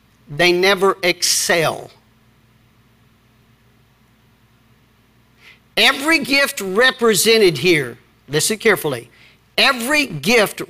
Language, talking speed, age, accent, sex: English, 60 wpm, 50-69, American, male